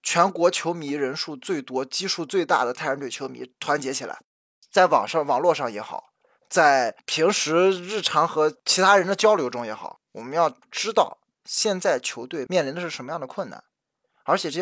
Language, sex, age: Chinese, male, 20-39